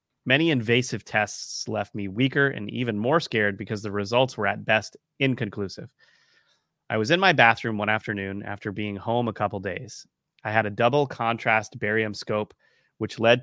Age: 30-49